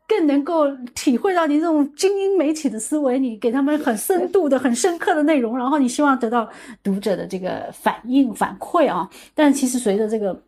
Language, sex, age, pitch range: Chinese, female, 30-49, 190-280 Hz